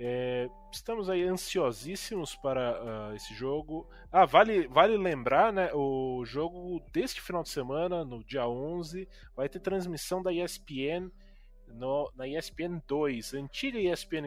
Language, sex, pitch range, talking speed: Portuguese, male, 115-160 Hz, 125 wpm